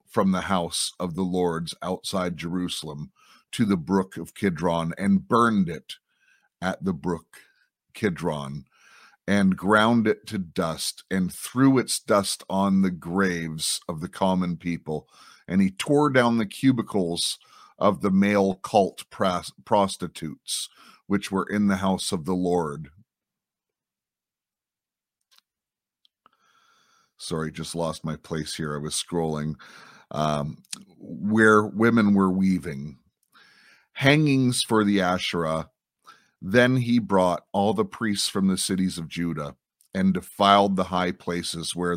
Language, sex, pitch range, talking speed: English, male, 85-105 Hz, 130 wpm